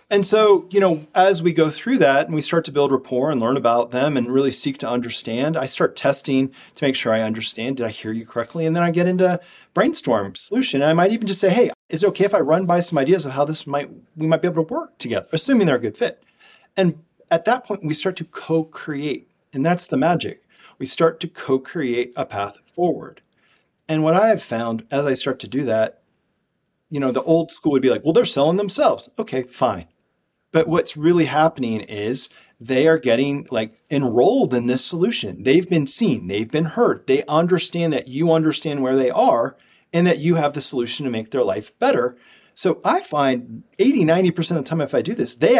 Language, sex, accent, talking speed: English, male, American, 225 wpm